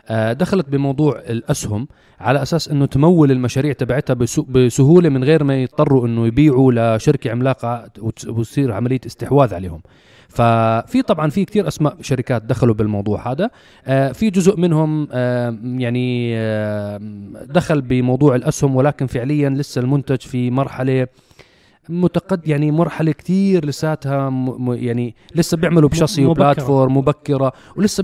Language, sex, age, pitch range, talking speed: Arabic, male, 30-49, 120-155 Hz, 125 wpm